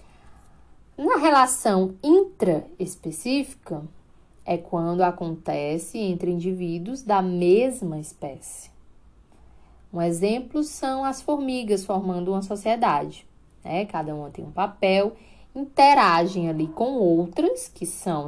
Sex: female